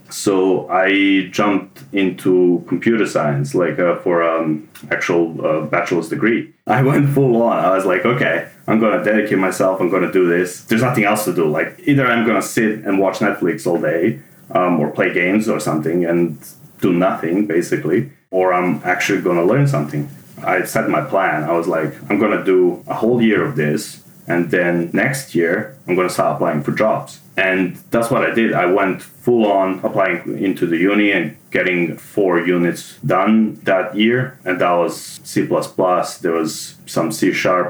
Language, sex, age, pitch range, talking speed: English, male, 30-49, 85-110 Hz, 195 wpm